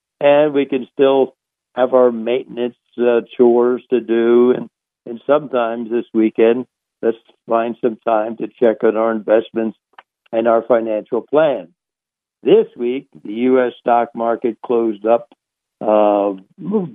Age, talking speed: 60-79, 135 wpm